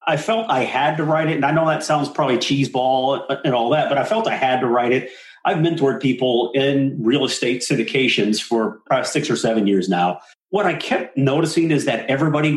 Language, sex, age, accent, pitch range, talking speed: English, male, 40-59, American, 120-160 Hz, 220 wpm